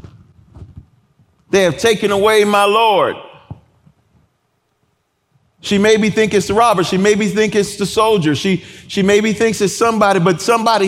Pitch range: 185-225 Hz